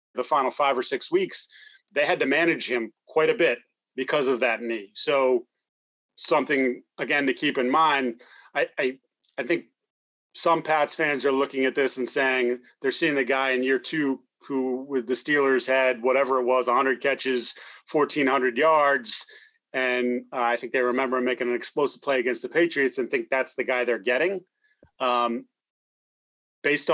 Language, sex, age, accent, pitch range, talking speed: English, male, 30-49, American, 130-170 Hz, 175 wpm